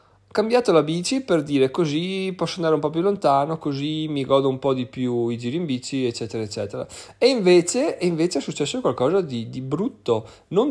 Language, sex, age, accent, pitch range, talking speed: Italian, male, 30-49, native, 120-160 Hz, 195 wpm